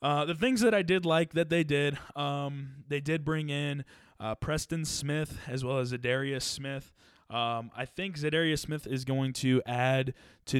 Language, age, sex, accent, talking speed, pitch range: English, 20-39, male, American, 185 wpm, 120-140 Hz